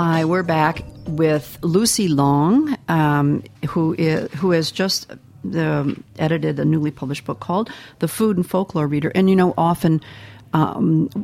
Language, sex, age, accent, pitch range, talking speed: English, female, 50-69, American, 145-190 Hz, 160 wpm